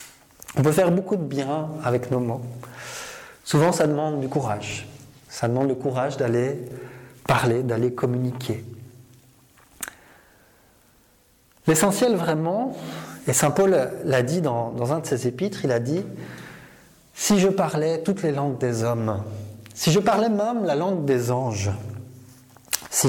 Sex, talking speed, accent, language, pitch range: male, 145 wpm, French, French, 120-160 Hz